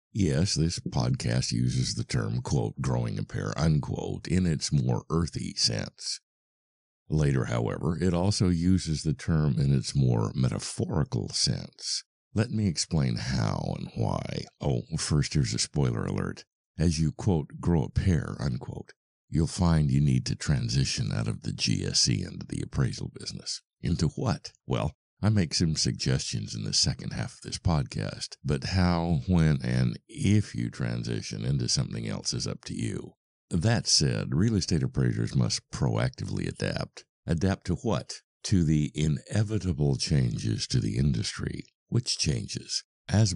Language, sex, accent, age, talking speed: English, male, American, 60-79, 150 wpm